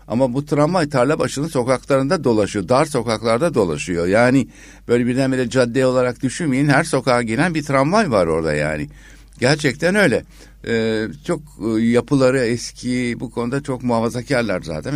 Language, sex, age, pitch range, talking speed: Turkish, male, 60-79, 95-135 Hz, 135 wpm